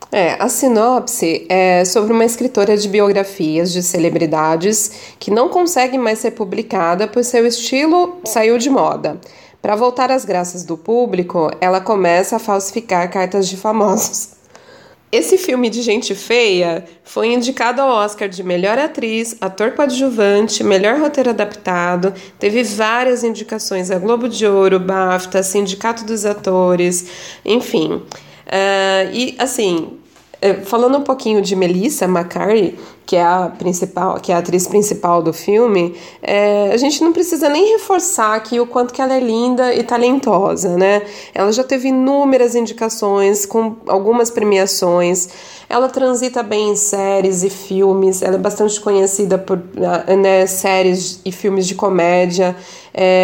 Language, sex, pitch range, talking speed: Portuguese, female, 185-235 Hz, 145 wpm